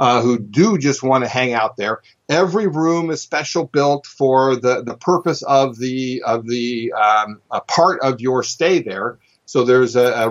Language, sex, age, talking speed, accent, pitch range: English, male, 50-69, 190 wpm, American, 115-135 Hz